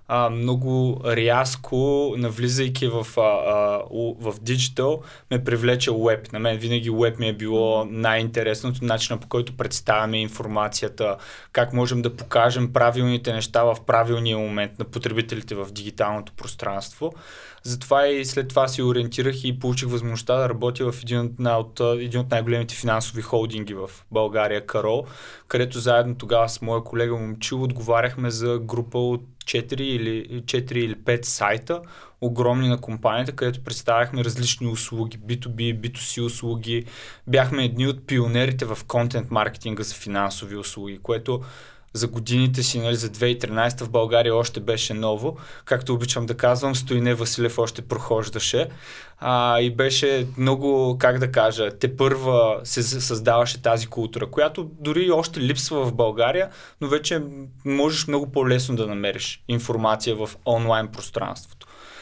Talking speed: 135 wpm